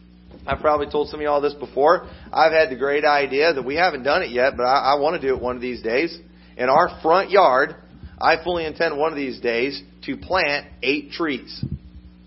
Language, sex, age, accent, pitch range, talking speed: English, male, 40-59, American, 125-165 Hz, 225 wpm